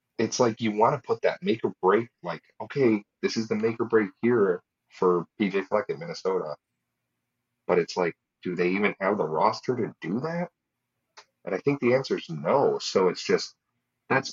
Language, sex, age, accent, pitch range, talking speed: English, male, 30-49, American, 90-125 Hz, 195 wpm